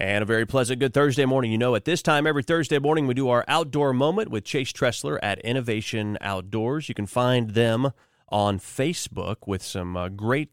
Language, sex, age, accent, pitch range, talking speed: English, male, 30-49, American, 105-145 Hz, 205 wpm